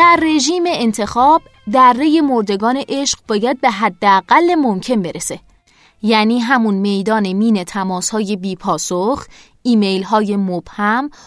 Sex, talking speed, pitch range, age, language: female, 115 wpm, 210-280 Hz, 20-39, Persian